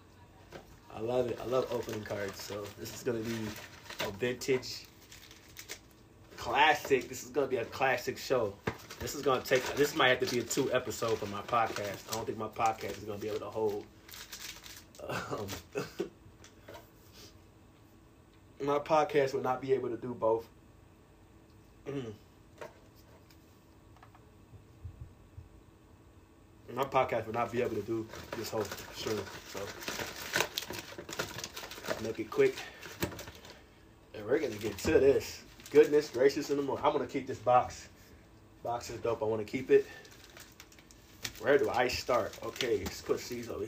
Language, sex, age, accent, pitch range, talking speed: English, male, 20-39, American, 105-130 Hz, 150 wpm